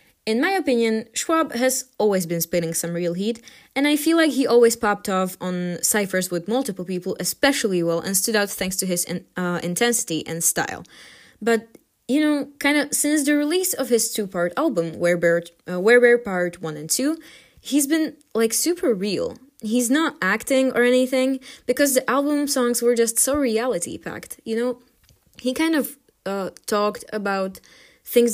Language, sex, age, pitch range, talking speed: English, female, 20-39, 185-260 Hz, 175 wpm